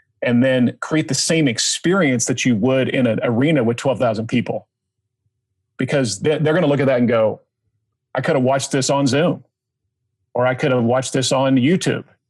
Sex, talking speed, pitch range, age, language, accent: male, 190 wpm, 120-145 Hz, 40-59, English, American